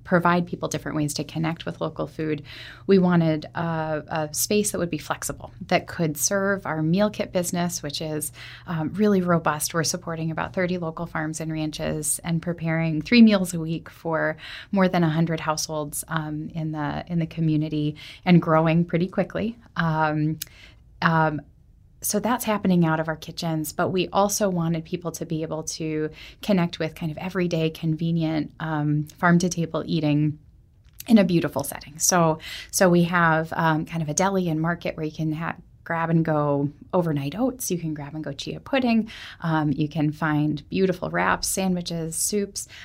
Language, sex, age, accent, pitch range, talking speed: English, female, 10-29, American, 155-180 Hz, 170 wpm